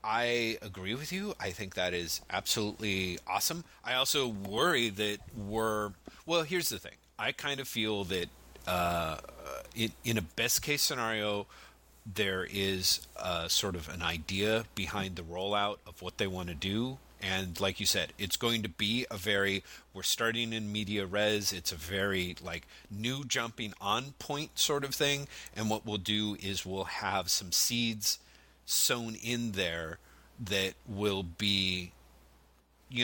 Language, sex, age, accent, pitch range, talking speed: English, male, 40-59, American, 85-110 Hz, 160 wpm